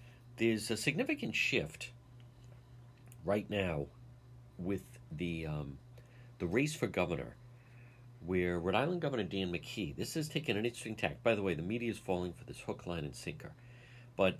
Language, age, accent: English, 50-69, American